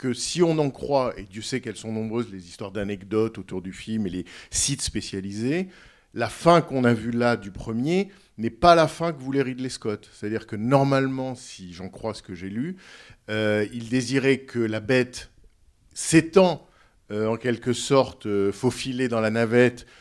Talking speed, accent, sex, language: 190 wpm, French, male, French